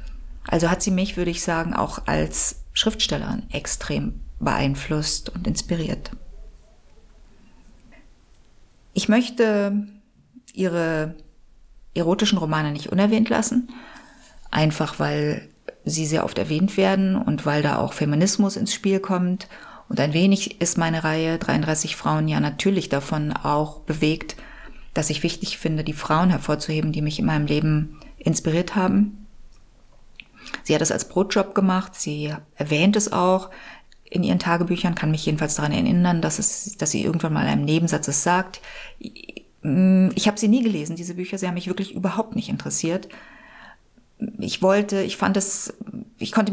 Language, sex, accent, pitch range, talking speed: German, female, German, 155-205 Hz, 150 wpm